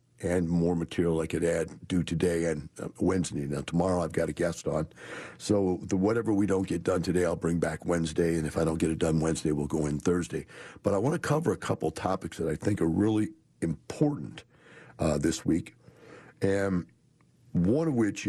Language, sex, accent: English, male, American